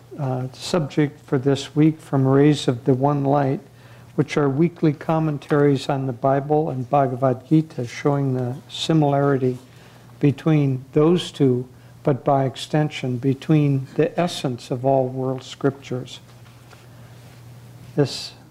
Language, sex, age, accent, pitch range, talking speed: English, male, 60-79, American, 125-150 Hz, 125 wpm